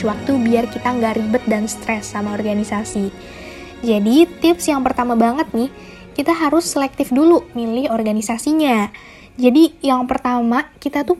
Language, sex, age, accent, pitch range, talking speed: Indonesian, female, 20-39, native, 230-285 Hz, 140 wpm